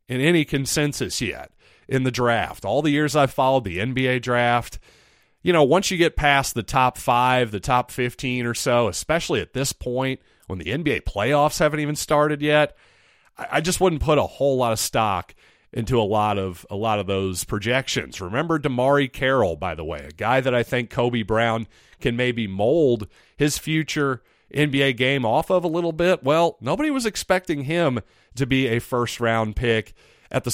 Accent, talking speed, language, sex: American, 190 wpm, English, male